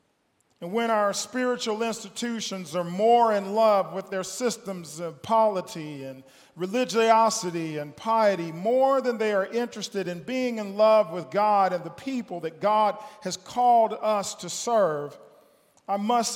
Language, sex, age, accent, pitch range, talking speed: English, male, 40-59, American, 160-215 Hz, 150 wpm